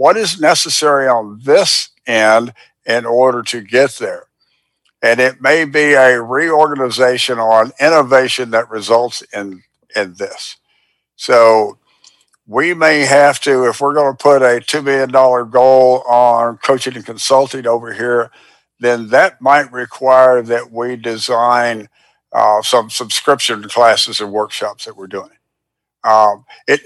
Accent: American